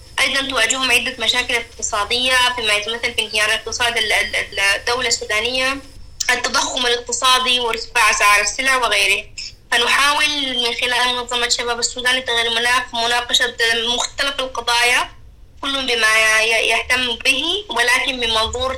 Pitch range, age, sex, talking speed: 225-260 Hz, 20-39, female, 115 wpm